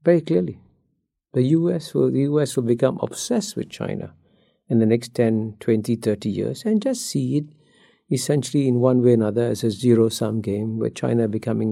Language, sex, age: English, male, 50-69